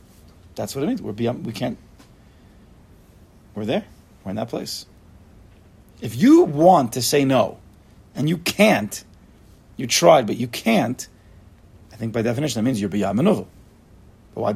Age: 40-59